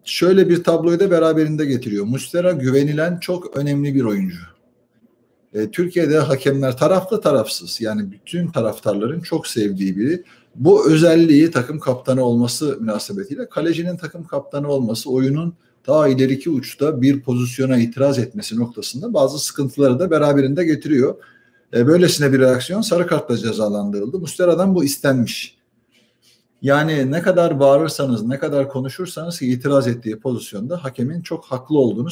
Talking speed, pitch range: 135 wpm, 125-165 Hz